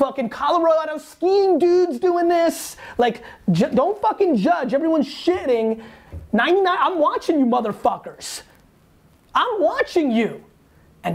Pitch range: 195-270 Hz